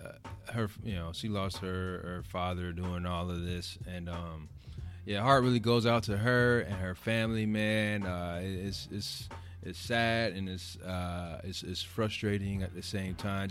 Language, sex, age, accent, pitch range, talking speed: English, male, 30-49, American, 90-110 Hz, 180 wpm